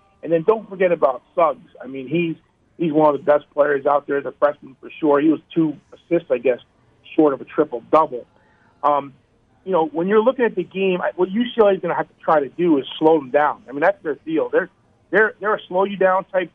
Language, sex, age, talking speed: English, male, 40-59, 245 wpm